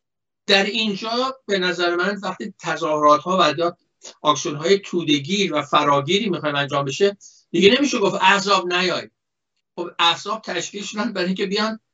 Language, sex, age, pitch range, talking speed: Persian, male, 60-79, 150-200 Hz, 140 wpm